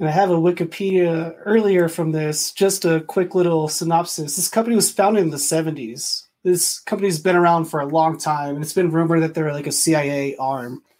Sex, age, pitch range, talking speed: male, 20-39, 160-195 Hz, 215 wpm